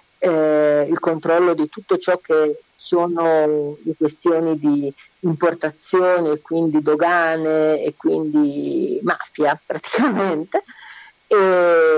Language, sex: Italian, female